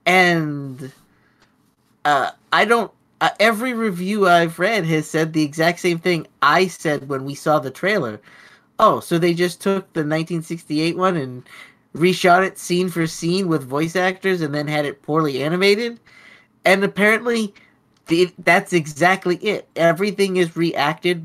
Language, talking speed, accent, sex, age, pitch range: English, 150 wpm, American, male, 30-49, 155-195 Hz